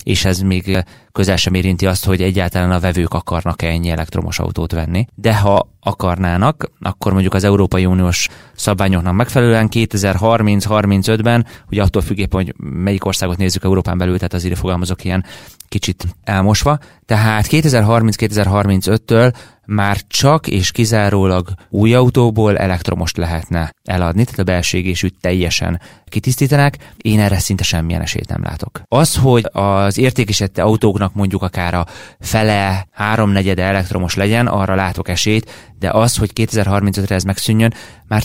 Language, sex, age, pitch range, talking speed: Hungarian, male, 30-49, 95-110 Hz, 135 wpm